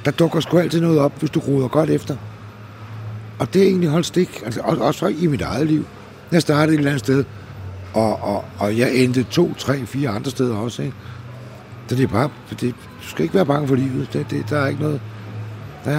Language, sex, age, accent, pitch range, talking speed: English, male, 60-79, Danish, 105-145 Hz, 225 wpm